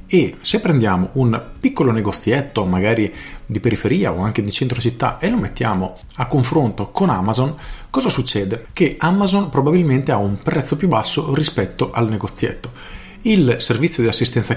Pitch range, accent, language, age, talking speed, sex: 105-130 Hz, native, Italian, 40-59, 155 wpm, male